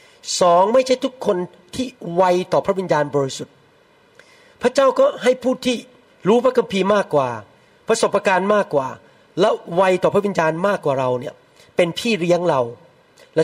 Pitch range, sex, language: 165-225 Hz, male, Thai